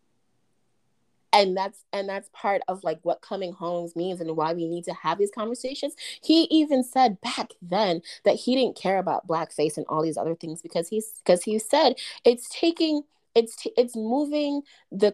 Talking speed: 185 wpm